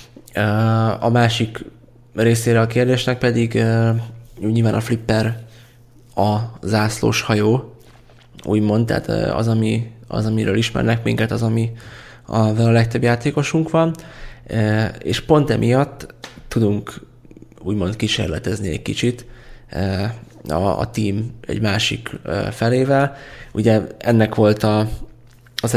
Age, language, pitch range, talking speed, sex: 20-39, Hungarian, 110-120 Hz, 105 wpm, male